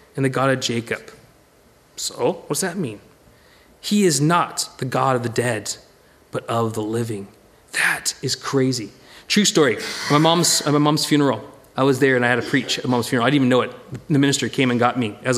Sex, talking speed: male, 230 wpm